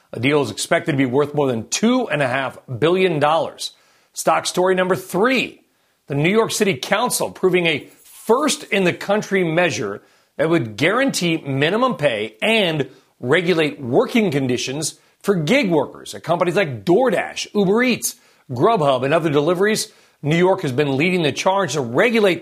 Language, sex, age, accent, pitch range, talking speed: English, male, 40-59, American, 135-185 Hz, 145 wpm